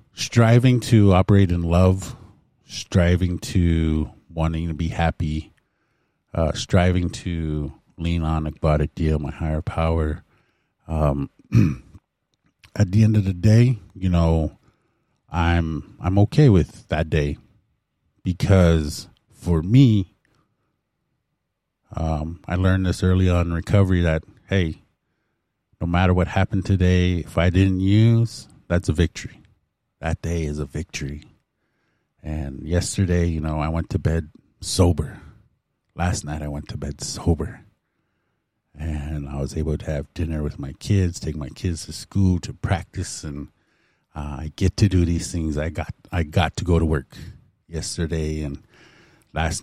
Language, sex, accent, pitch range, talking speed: English, male, American, 80-95 Hz, 145 wpm